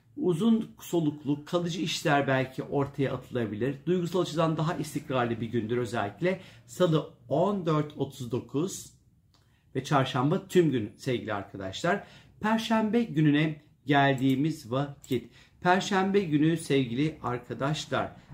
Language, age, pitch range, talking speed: Turkish, 50-69, 125-165 Hz, 100 wpm